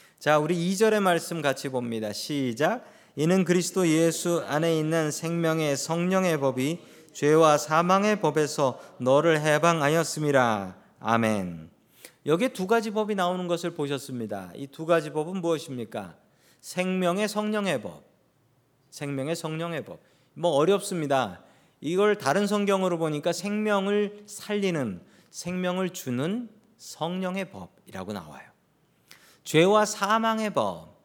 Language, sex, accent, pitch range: Korean, male, native, 140-200 Hz